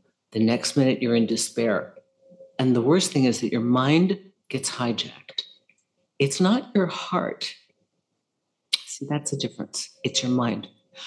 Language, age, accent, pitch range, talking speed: English, 50-69, American, 125-170 Hz, 145 wpm